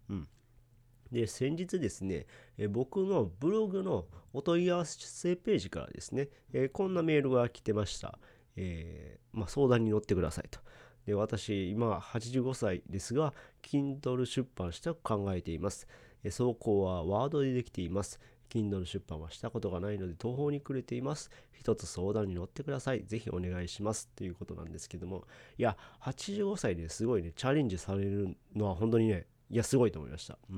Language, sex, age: Japanese, male, 40-59